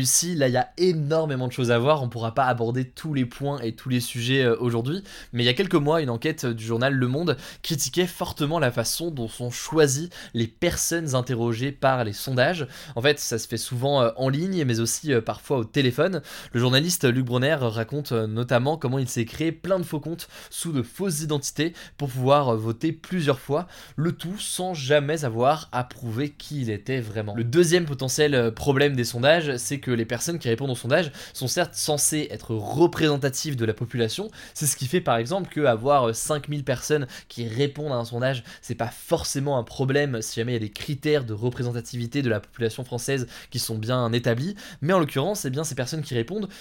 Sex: male